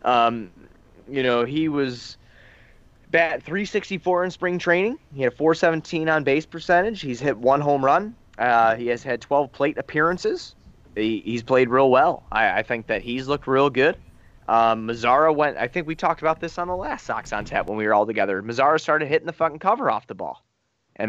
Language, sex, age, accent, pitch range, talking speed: English, male, 20-39, American, 110-145 Hz, 210 wpm